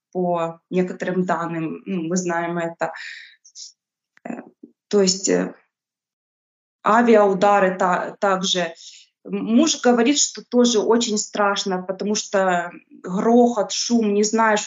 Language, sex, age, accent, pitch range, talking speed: Ukrainian, female, 20-39, native, 190-225 Hz, 90 wpm